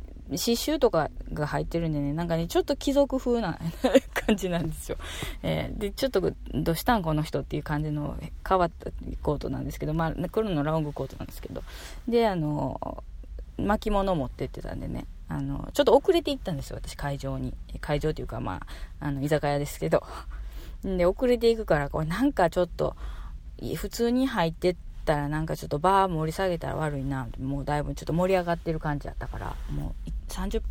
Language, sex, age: Japanese, female, 20-39